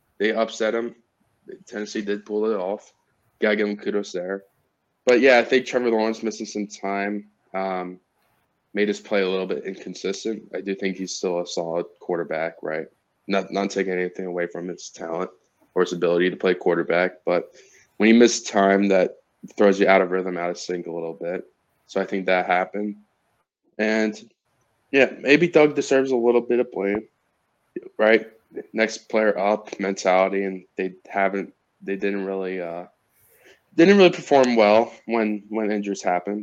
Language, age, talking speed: English, 20-39, 175 wpm